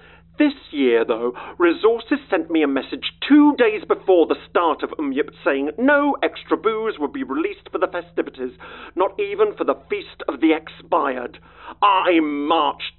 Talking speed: 165 wpm